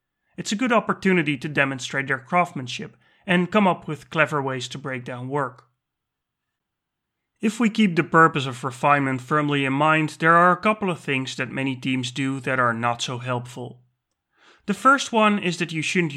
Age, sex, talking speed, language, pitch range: 30-49, male, 185 wpm, English, 130-170 Hz